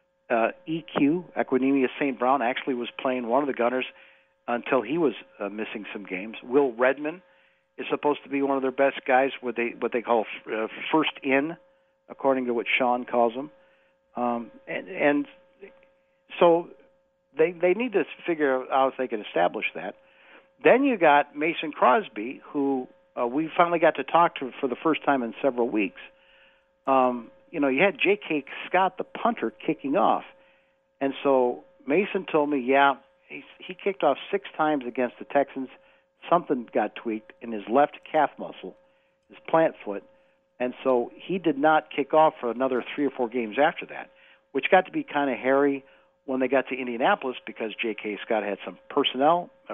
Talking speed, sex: 180 wpm, male